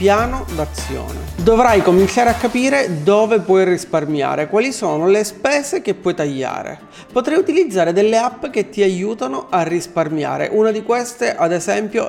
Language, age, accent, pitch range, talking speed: Italian, 30-49, native, 170-220 Hz, 150 wpm